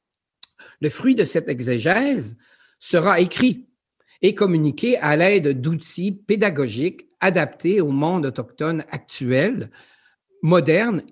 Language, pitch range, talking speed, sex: French, 140-210 Hz, 105 wpm, male